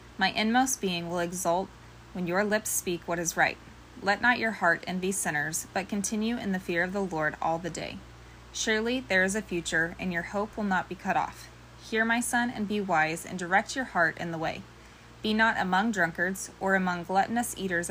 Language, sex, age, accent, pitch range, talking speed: English, female, 20-39, American, 170-205 Hz, 210 wpm